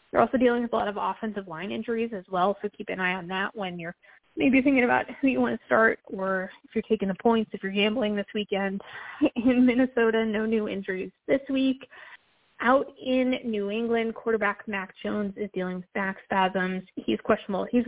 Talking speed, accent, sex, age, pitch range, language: 210 wpm, American, female, 20-39, 195-240 Hz, English